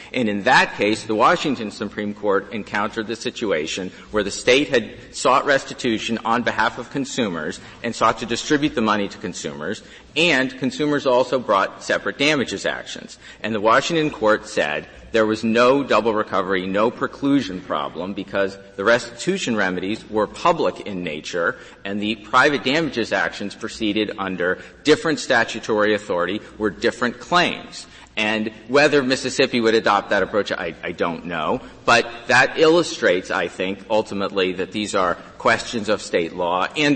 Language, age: English, 40-59